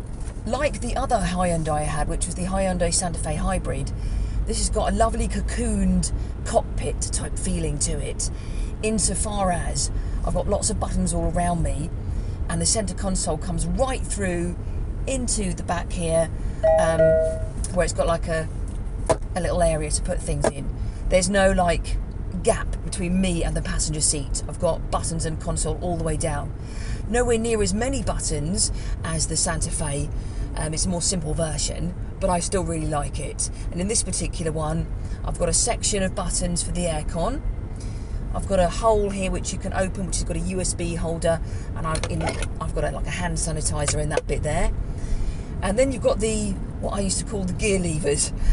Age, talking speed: 40-59, 190 wpm